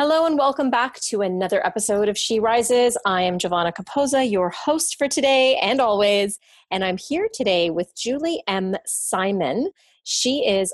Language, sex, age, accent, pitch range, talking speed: English, female, 30-49, American, 175-245 Hz, 170 wpm